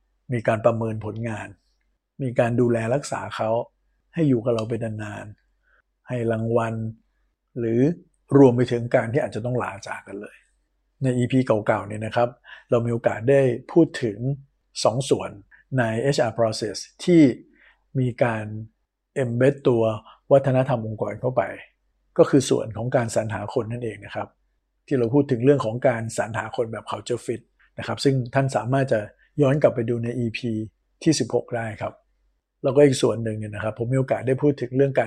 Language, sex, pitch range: Thai, male, 110-130 Hz